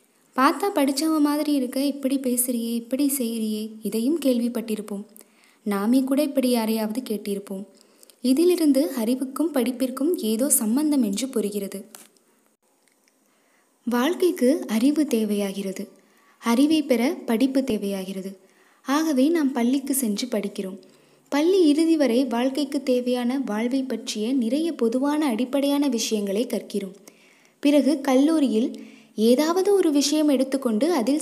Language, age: Tamil, 20-39